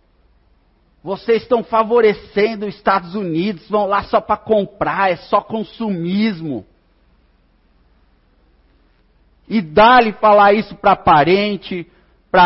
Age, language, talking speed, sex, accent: 50-69, Portuguese, 100 wpm, male, Brazilian